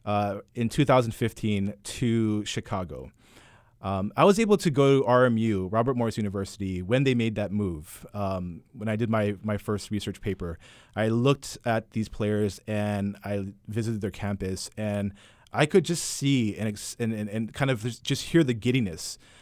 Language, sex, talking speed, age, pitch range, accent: English, male, 165 wpm, 30-49, 105-130 Hz, American